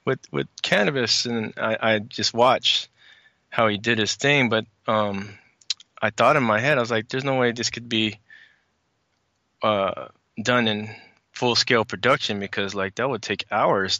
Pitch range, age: 105-120 Hz, 20-39